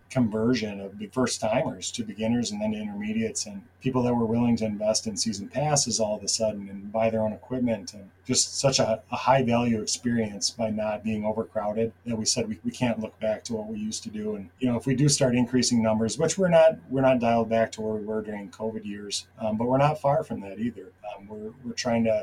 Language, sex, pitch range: English, male, 110-125 Hz